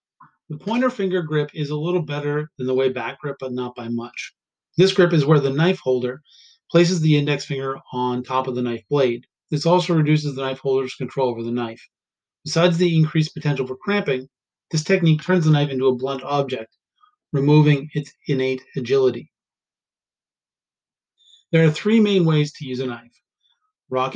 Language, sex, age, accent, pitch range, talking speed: English, male, 30-49, American, 130-165 Hz, 180 wpm